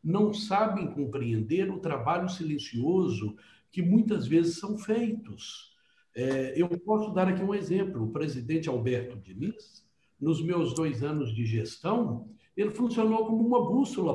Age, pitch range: 60-79, 145-215 Hz